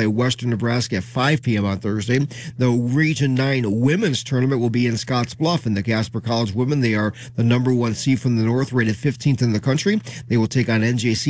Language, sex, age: English, male, 40-59